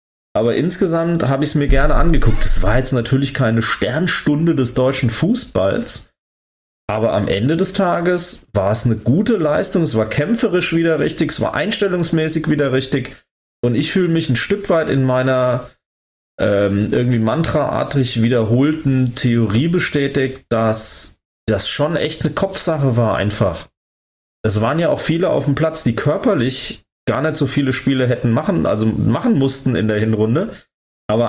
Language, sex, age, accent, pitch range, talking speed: German, male, 30-49, German, 115-160 Hz, 160 wpm